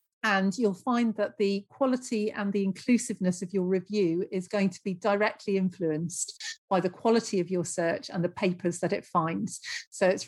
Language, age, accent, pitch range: English, 40-59, British, 185-230 Hz